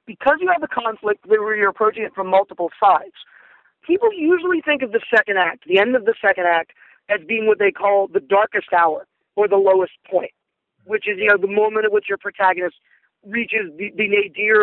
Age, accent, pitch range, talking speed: 40-59, American, 200-260 Hz, 210 wpm